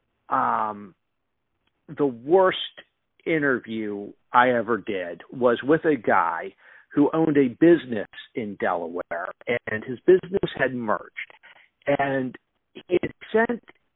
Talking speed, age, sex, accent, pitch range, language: 110 wpm, 50-69, male, American, 120-155 Hz, English